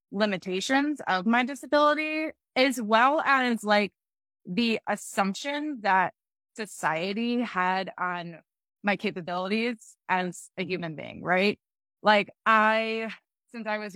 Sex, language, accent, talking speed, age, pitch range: female, English, American, 110 wpm, 20-39, 195-250 Hz